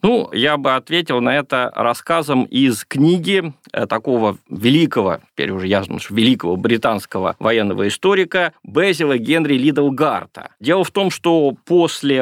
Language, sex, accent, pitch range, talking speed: Russian, male, native, 125-170 Hz, 130 wpm